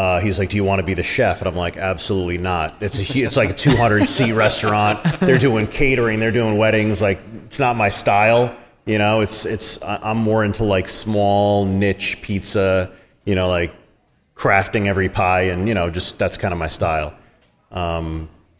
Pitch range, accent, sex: 90-110 Hz, American, male